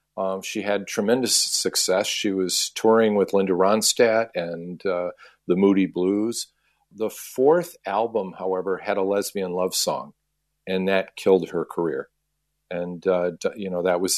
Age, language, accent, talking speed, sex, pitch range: 50-69, English, American, 150 wpm, male, 90-105 Hz